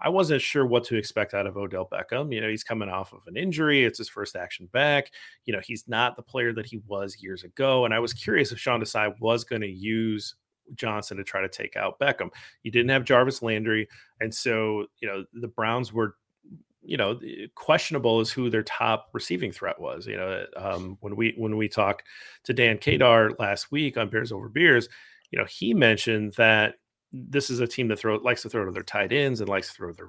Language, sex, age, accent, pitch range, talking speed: English, male, 30-49, American, 105-125 Hz, 225 wpm